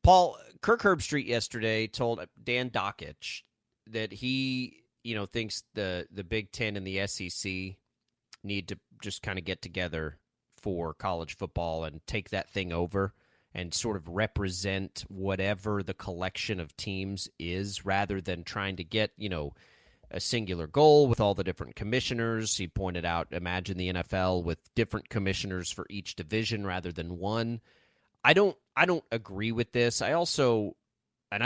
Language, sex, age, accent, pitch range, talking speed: English, male, 30-49, American, 95-115 Hz, 160 wpm